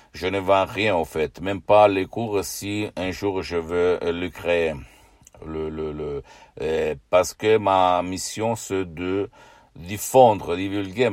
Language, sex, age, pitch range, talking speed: Italian, male, 60-79, 80-95 Hz, 155 wpm